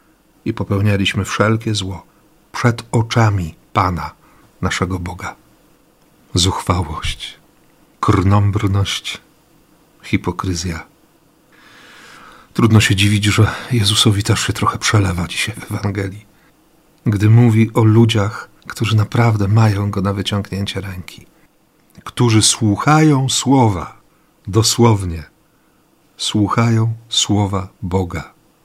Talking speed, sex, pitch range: 90 wpm, male, 95-115 Hz